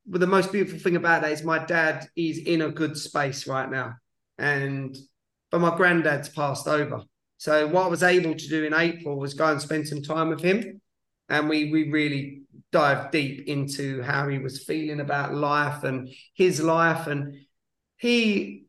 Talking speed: 190 wpm